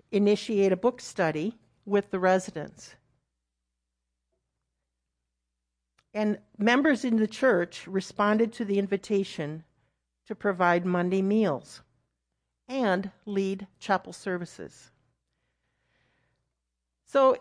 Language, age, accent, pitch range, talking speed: English, 60-79, American, 170-225 Hz, 85 wpm